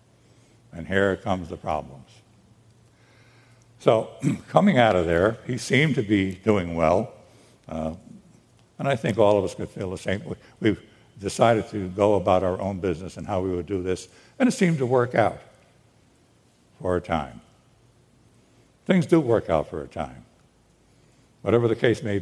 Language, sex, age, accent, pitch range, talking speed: English, male, 60-79, American, 100-130 Hz, 165 wpm